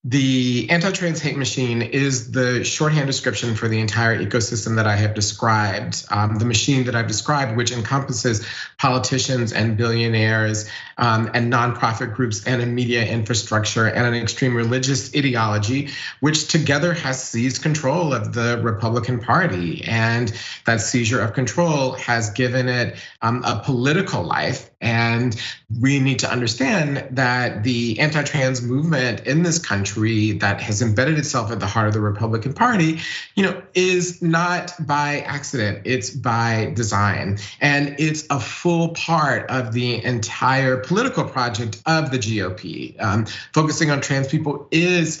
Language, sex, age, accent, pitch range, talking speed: English, male, 30-49, American, 115-145 Hz, 150 wpm